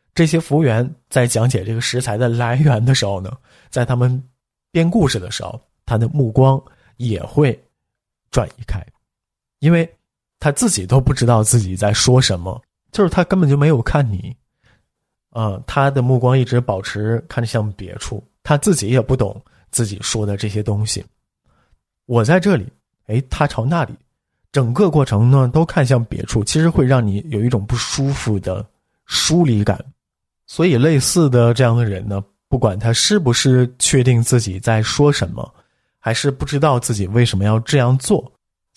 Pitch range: 105-135 Hz